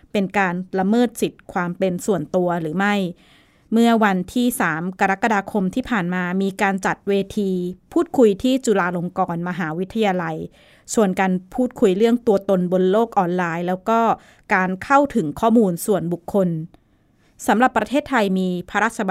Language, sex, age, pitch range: Thai, female, 20-39, 185-230 Hz